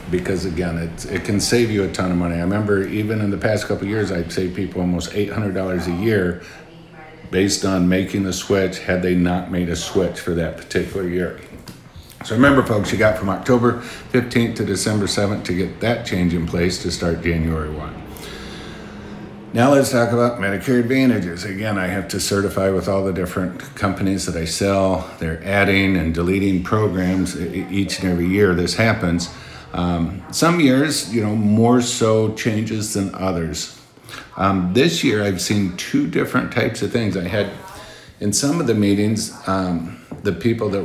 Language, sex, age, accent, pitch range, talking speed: English, male, 50-69, American, 90-105 Hz, 180 wpm